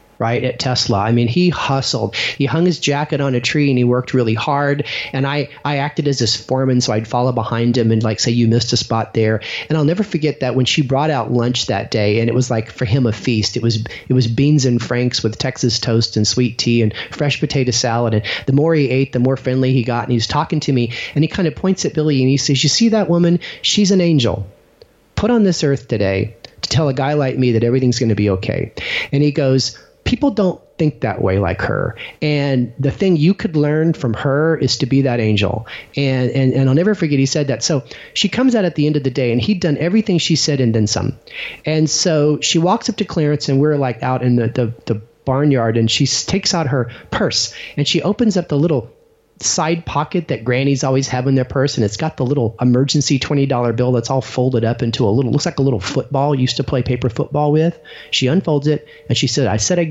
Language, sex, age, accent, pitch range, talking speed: English, male, 30-49, American, 120-150 Hz, 250 wpm